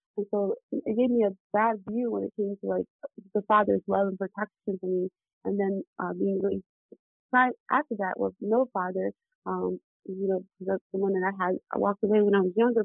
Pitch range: 195-235 Hz